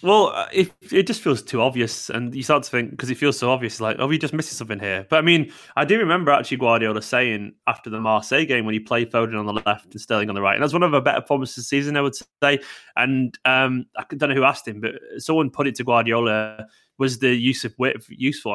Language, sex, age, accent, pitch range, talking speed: English, male, 20-39, British, 120-150 Hz, 260 wpm